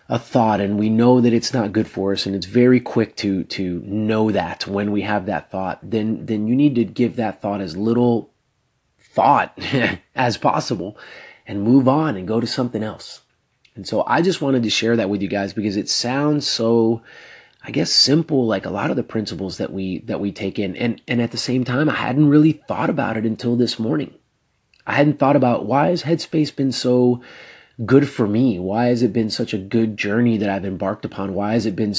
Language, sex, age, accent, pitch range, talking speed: English, male, 30-49, American, 105-125 Hz, 220 wpm